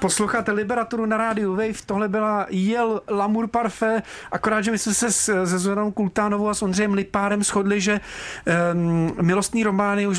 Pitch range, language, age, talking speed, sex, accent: 180-220 Hz, Czech, 40-59, 165 wpm, male, native